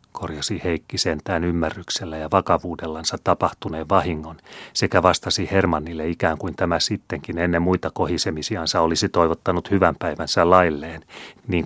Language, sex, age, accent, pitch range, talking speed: Finnish, male, 30-49, native, 80-95 Hz, 125 wpm